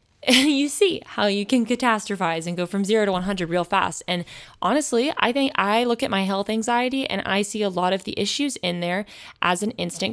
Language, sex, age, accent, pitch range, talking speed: English, female, 20-39, American, 185-240 Hz, 220 wpm